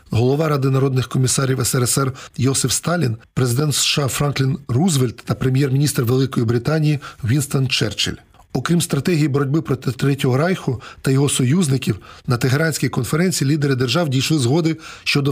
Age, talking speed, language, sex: 40-59, 135 wpm, Ukrainian, male